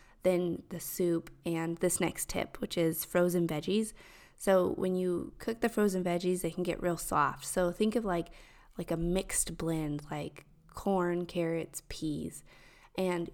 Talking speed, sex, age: 160 wpm, female, 20-39